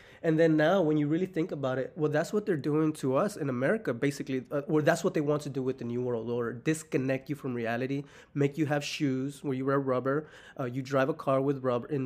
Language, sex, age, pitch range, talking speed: English, male, 20-39, 130-150 Hz, 260 wpm